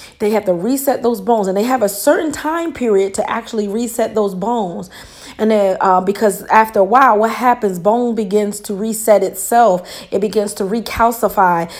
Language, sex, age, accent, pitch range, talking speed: English, female, 30-49, American, 200-235 Hz, 185 wpm